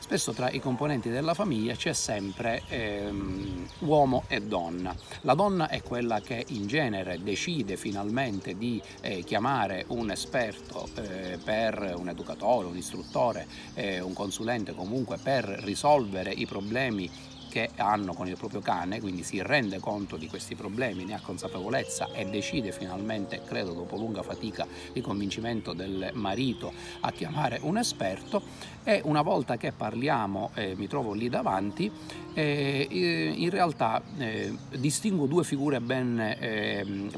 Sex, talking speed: male, 145 wpm